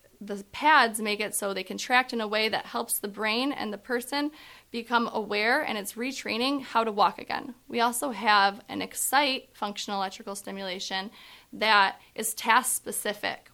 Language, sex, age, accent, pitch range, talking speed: English, female, 20-39, American, 200-245 Hz, 170 wpm